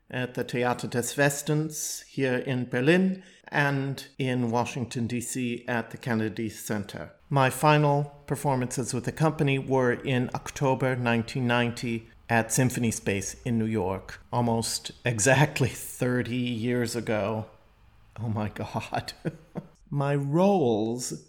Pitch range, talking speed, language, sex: 115-135 Hz, 120 wpm, English, male